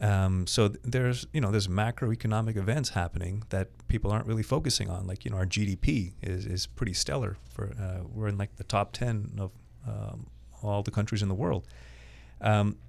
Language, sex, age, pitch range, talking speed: English, male, 30-49, 95-115 Hz, 195 wpm